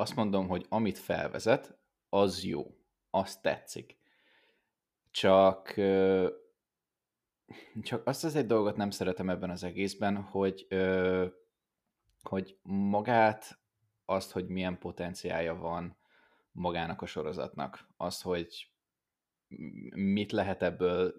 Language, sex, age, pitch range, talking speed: Hungarian, male, 20-39, 90-100 Hz, 100 wpm